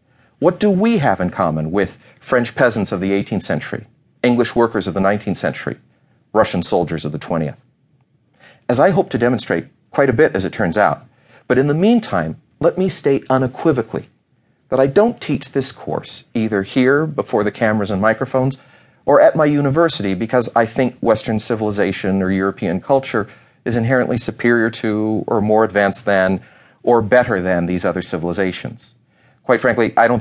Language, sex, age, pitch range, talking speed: English, male, 40-59, 95-130 Hz, 175 wpm